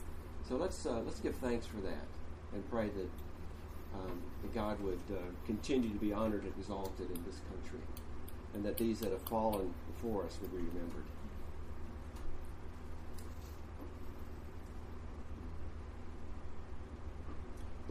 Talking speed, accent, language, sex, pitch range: 120 wpm, American, English, male, 80-110 Hz